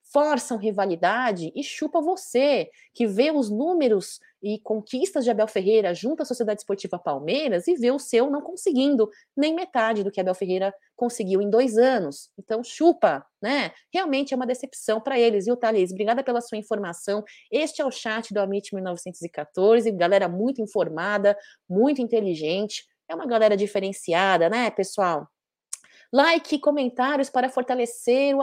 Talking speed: 155 wpm